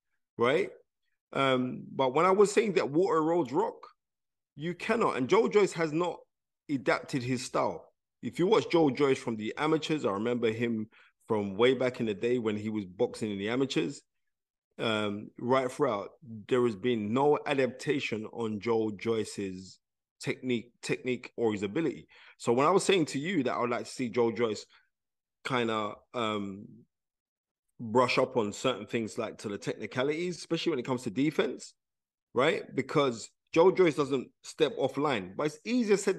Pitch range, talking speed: 115-150 Hz, 175 wpm